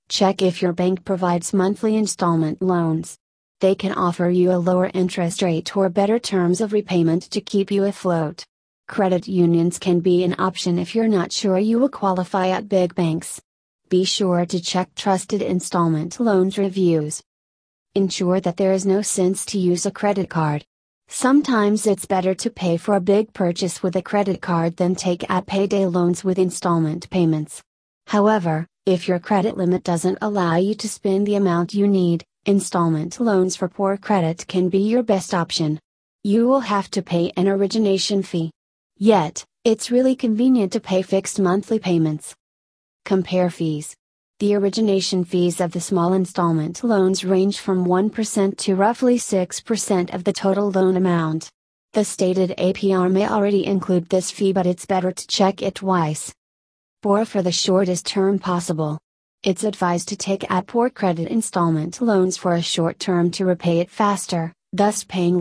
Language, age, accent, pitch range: English, 30-49, American, 175-200 Hz